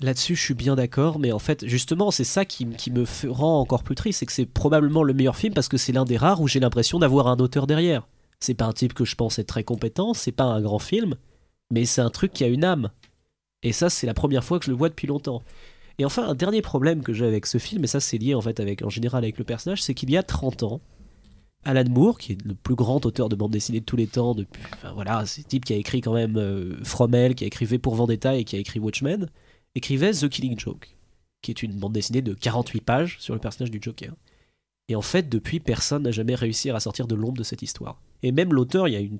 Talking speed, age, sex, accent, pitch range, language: 275 wpm, 20-39, male, French, 115-150 Hz, French